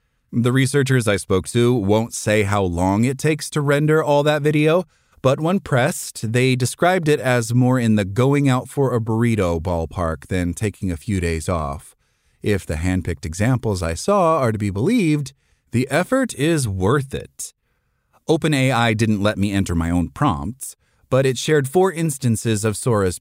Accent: American